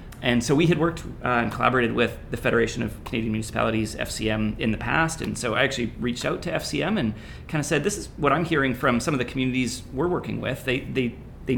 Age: 30-49